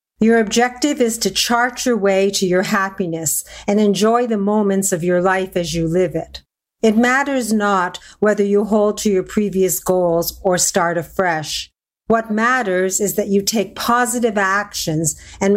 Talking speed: 165 wpm